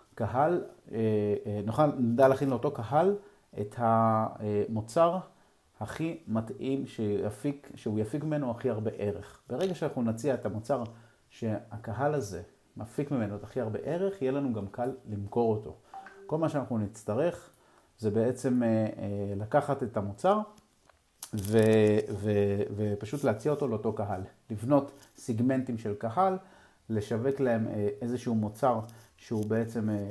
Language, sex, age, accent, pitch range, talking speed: Hebrew, male, 30-49, native, 110-140 Hz, 125 wpm